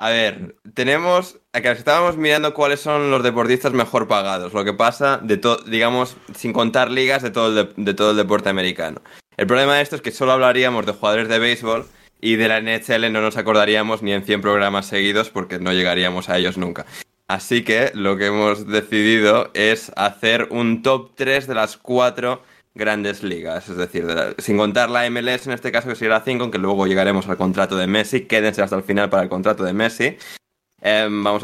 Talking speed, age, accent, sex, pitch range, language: 195 wpm, 20-39, Spanish, male, 100-120 Hz, Spanish